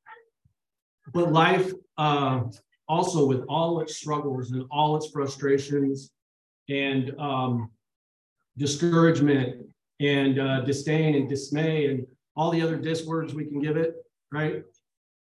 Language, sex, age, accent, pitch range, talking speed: English, male, 40-59, American, 130-155 Hz, 120 wpm